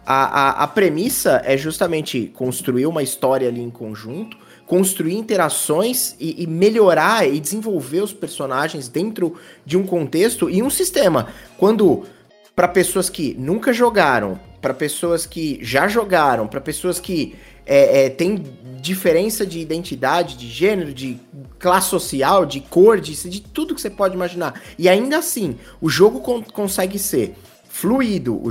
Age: 20-39